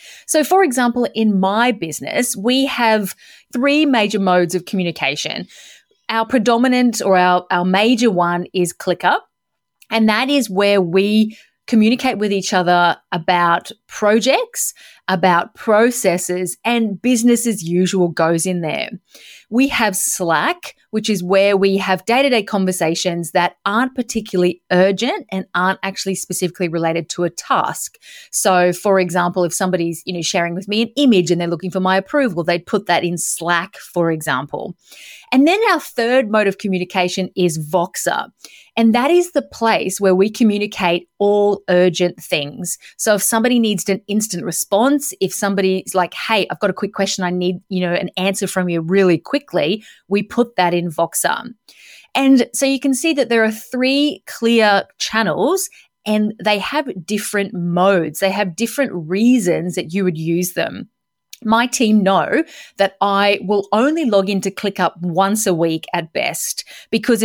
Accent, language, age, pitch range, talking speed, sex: Australian, English, 30-49, 180-230 Hz, 160 wpm, female